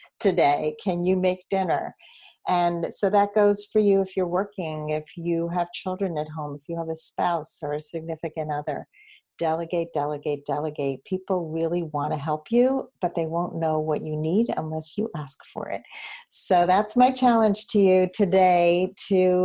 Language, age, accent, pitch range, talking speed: English, 50-69, American, 155-190 Hz, 180 wpm